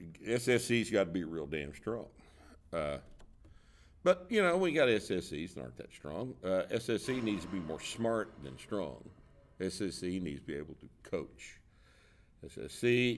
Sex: male